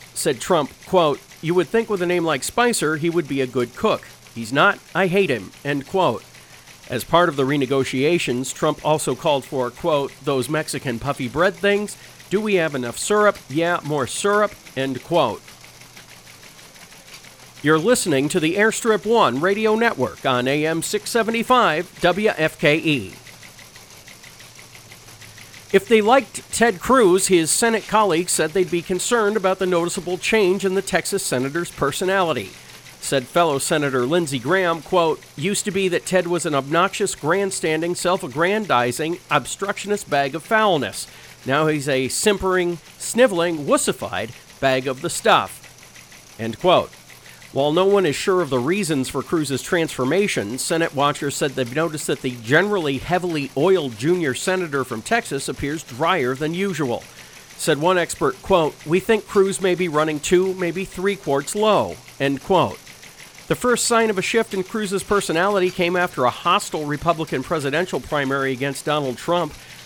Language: English